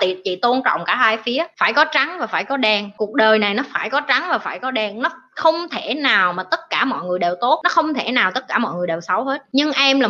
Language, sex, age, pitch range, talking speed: Vietnamese, female, 20-39, 215-300 Hz, 290 wpm